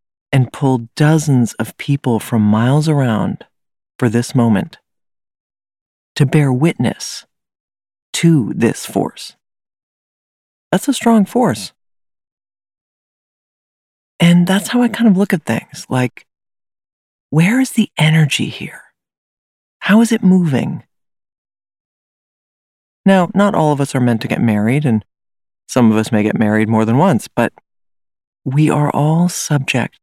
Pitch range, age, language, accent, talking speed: 115-180 Hz, 40-59, English, American, 130 wpm